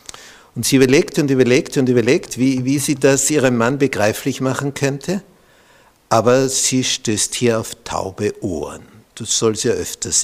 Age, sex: 60-79, male